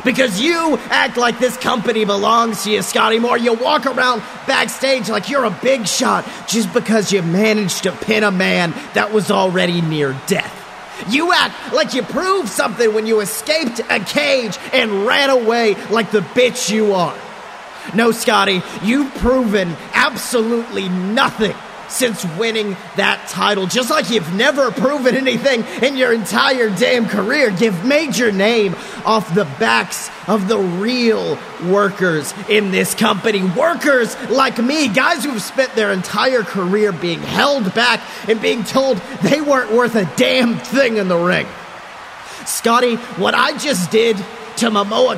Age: 30-49